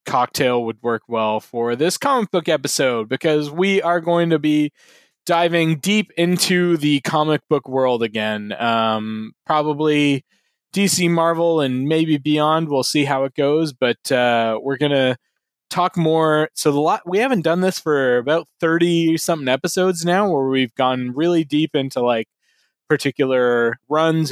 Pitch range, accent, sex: 120-160 Hz, American, male